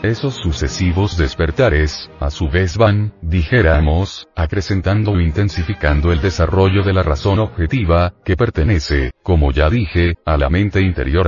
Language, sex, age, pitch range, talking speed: English, male, 40-59, 85-105 Hz, 140 wpm